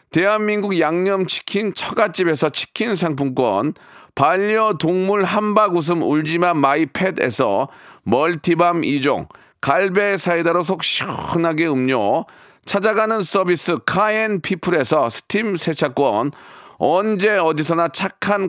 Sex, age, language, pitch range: male, 40-59, Korean, 155-200 Hz